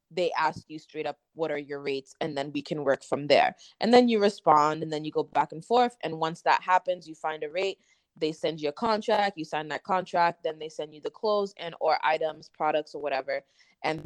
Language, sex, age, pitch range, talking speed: English, female, 20-39, 155-185 Hz, 245 wpm